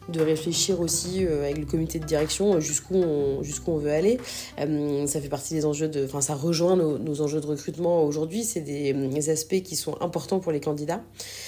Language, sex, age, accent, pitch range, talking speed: French, female, 30-49, French, 155-185 Hz, 205 wpm